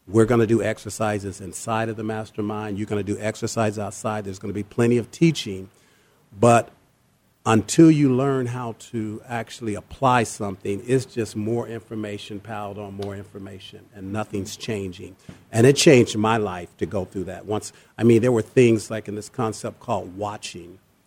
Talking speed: 180 wpm